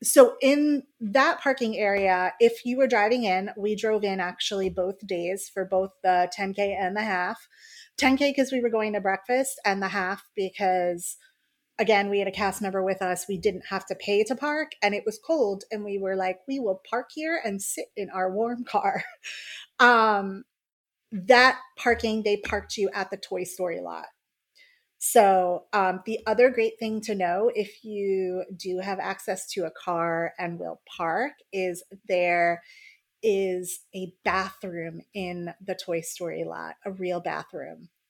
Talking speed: 175 wpm